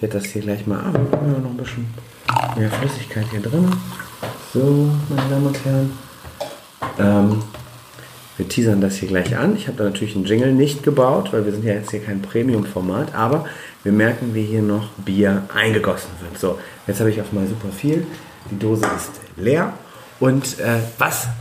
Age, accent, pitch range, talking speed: 40-59, German, 105-135 Hz, 185 wpm